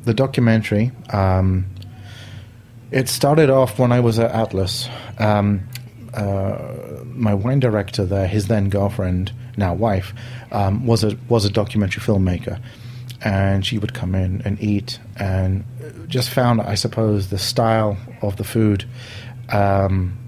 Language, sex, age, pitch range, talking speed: English, male, 30-49, 100-120 Hz, 140 wpm